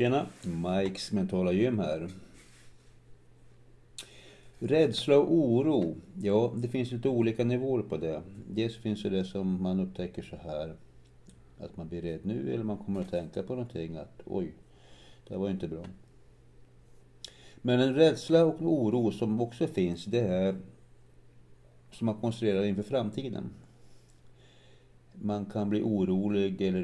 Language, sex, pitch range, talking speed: Swedish, male, 90-120 Hz, 140 wpm